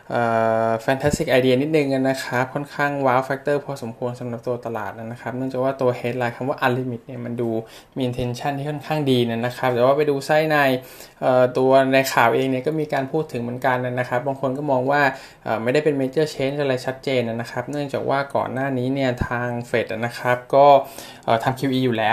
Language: Thai